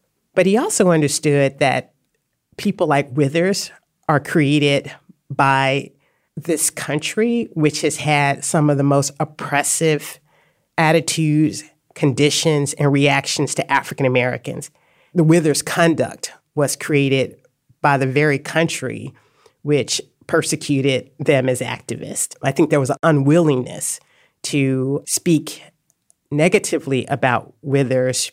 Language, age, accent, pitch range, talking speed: English, 40-59, American, 135-160 Hz, 110 wpm